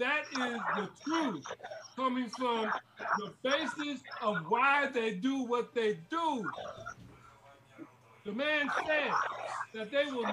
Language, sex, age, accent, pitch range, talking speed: Russian, male, 40-59, American, 245-300 Hz, 120 wpm